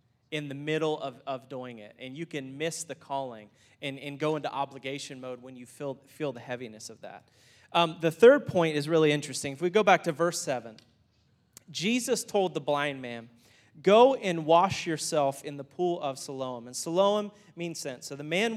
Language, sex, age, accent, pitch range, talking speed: English, male, 30-49, American, 135-185 Hz, 200 wpm